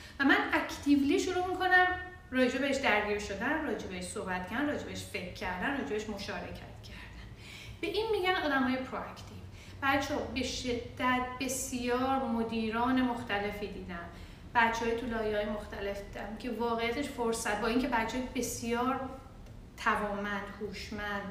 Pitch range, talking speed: 210-290 Hz, 130 wpm